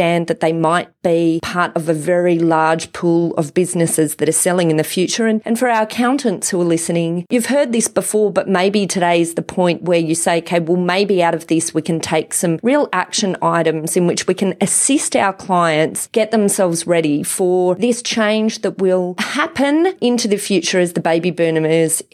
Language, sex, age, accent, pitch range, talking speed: English, female, 30-49, Australian, 170-205 Hz, 200 wpm